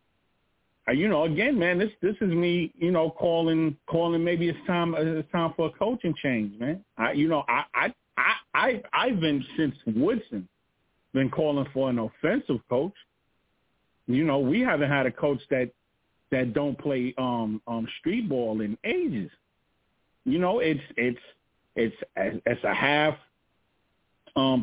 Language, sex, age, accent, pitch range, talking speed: English, male, 40-59, American, 130-160 Hz, 160 wpm